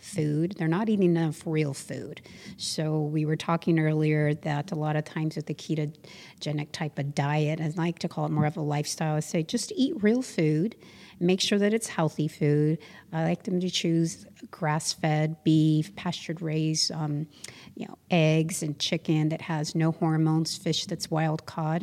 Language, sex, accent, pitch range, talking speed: English, female, American, 155-175 Hz, 185 wpm